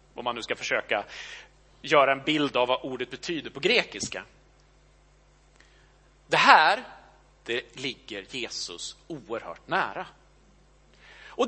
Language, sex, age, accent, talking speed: Swedish, male, 30-49, Norwegian, 115 wpm